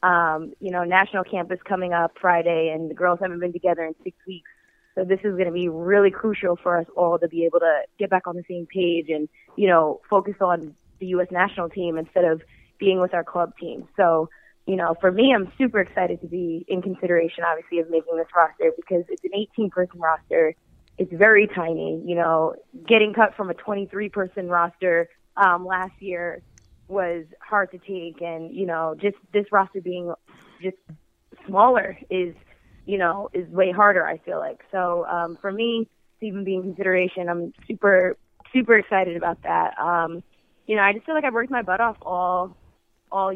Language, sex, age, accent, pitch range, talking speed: English, female, 20-39, American, 170-195 Hz, 195 wpm